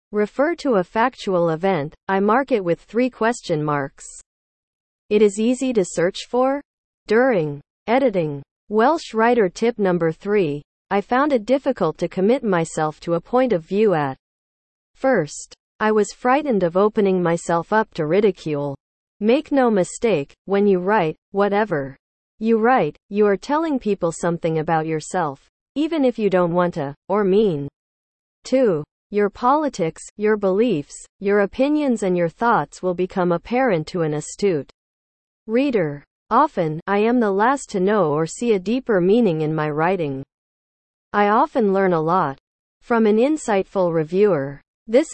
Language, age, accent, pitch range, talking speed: English, 40-59, American, 165-235 Hz, 150 wpm